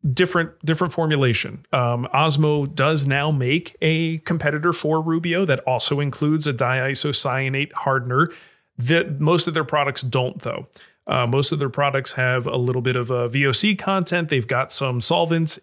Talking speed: 160 wpm